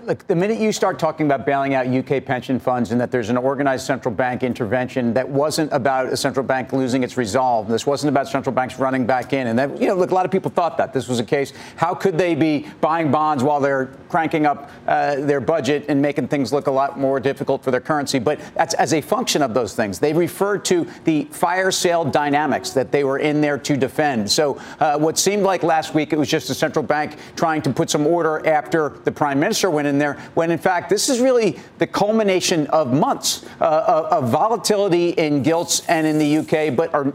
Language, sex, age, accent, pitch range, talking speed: English, male, 40-59, American, 135-170 Hz, 235 wpm